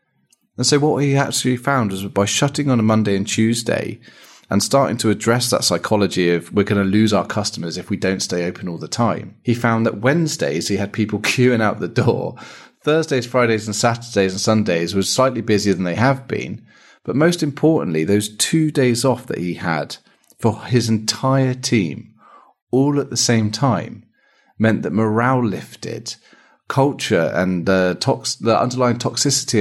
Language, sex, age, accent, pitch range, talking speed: English, male, 30-49, British, 95-125 Hz, 180 wpm